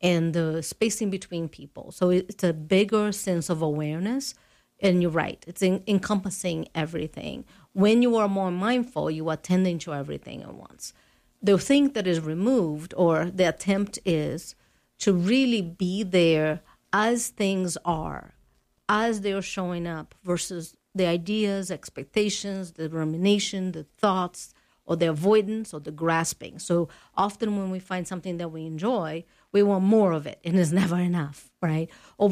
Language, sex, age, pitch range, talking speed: English, female, 50-69, 170-205 Hz, 160 wpm